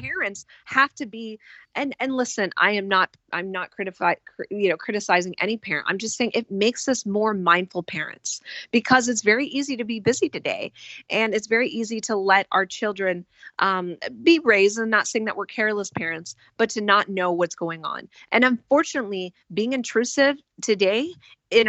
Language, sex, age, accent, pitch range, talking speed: English, female, 30-49, American, 170-220 Hz, 185 wpm